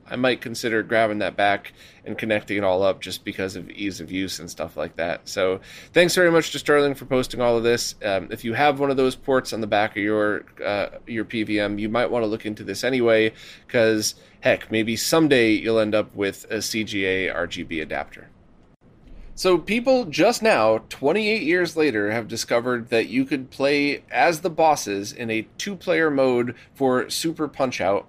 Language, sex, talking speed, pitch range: English, male, 195 wpm, 110-150 Hz